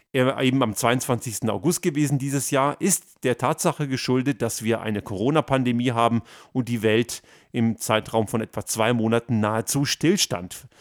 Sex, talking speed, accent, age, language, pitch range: male, 160 wpm, German, 40-59, German, 115-150 Hz